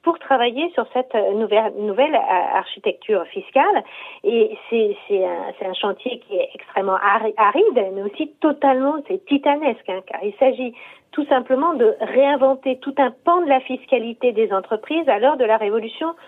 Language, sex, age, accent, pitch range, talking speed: French, female, 50-69, French, 220-310 Hz, 160 wpm